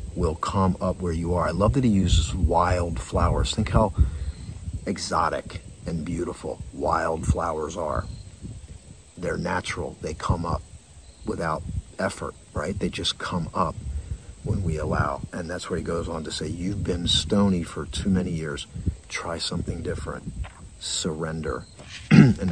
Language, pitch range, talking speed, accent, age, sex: English, 80-95 Hz, 150 wpm, American, 50-69, male